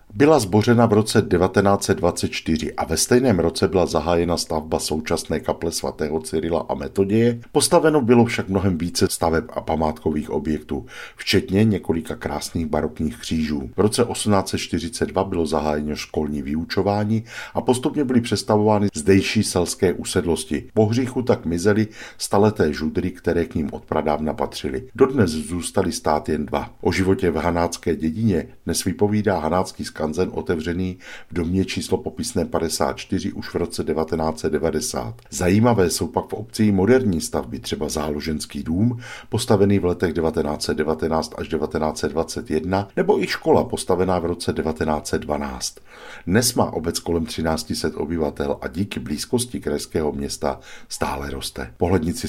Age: 50-69